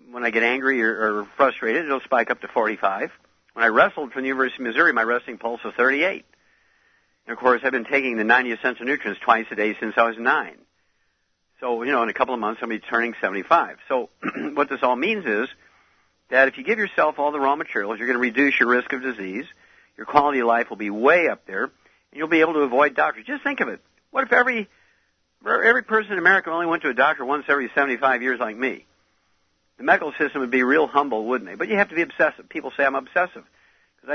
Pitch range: 110-140 Hz